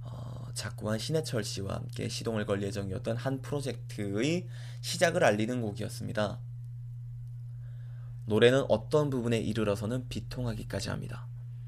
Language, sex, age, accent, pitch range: Korean, male, 20-39, native, 115-125 Hz